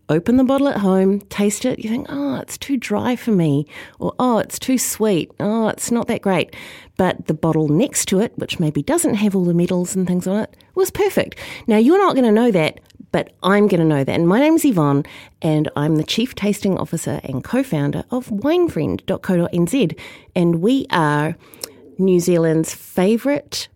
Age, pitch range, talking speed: 30-49, 160-250 Hz, 195 wpm